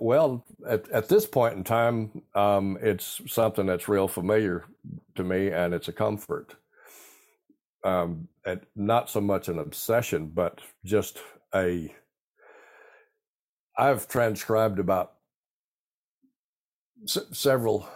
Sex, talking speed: male, 110 wpm